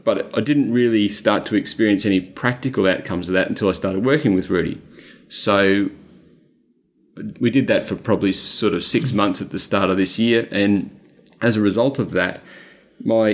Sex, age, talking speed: male, 30-49, 185 wpm